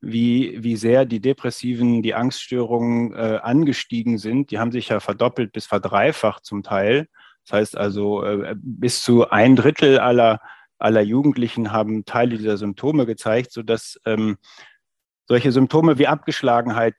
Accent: German